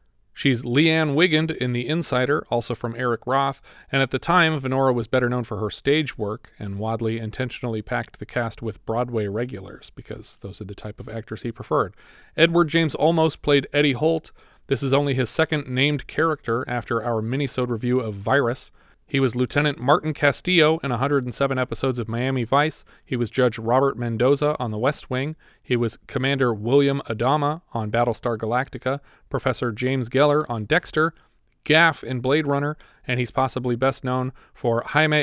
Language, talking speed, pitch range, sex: English, 175 wpm, 120-145 Hz, male